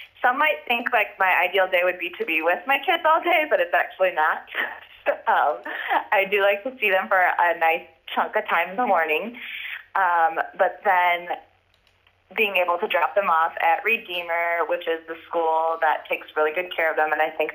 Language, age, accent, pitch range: English, 20-39, American, 160-190 Hz